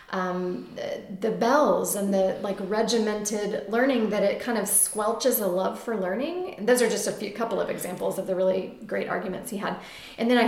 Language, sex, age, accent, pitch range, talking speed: English, female, 30-49, American, 190-240 Hz, 210 wpm